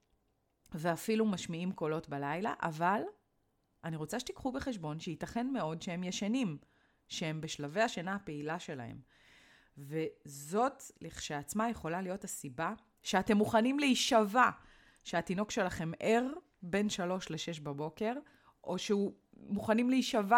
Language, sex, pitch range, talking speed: Hebrew, female, 155-215 Hz, 110 wpm